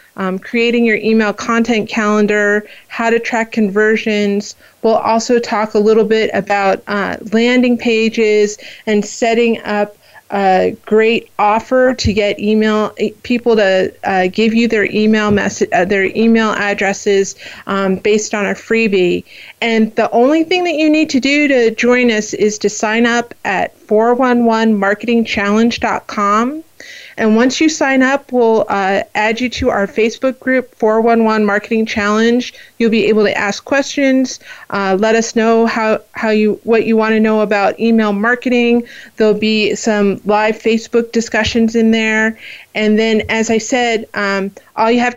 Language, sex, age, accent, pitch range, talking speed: English, female, 30-49, American, 210-235 Hz, 155 wpm